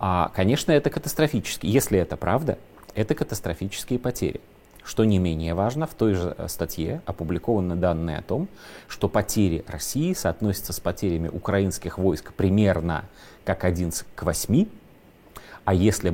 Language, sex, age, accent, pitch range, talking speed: Russian, male, 30-49, native, 95-130 Hz, 140 wpm